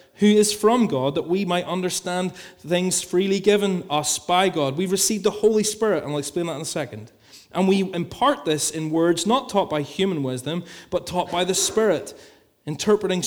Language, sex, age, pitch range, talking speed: English, male, 30-49, 140-185 Hz, 195 wpm